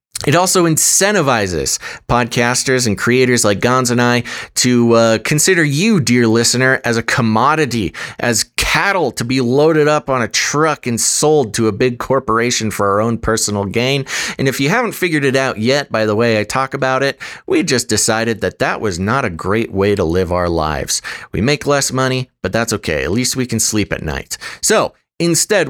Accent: American